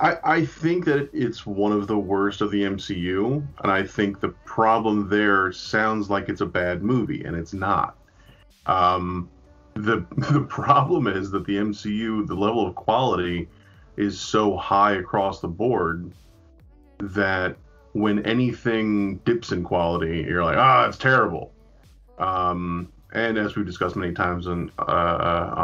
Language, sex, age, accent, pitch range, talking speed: English, male, 30-49, American, 90-110 Hz, 155 wpm